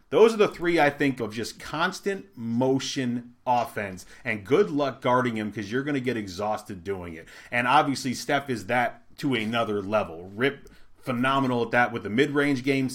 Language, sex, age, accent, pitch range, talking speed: English, male, 30-49, American, 110-140 Hz, 185 wpm